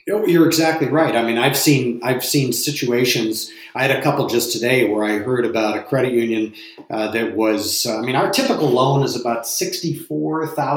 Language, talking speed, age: English, 195 wpm, 40-59